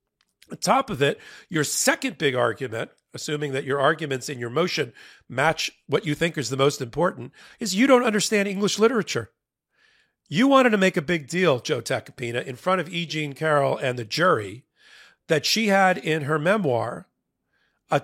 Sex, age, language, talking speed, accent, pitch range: male, 40-59, English, 180 wpm, American, 135-180 Hz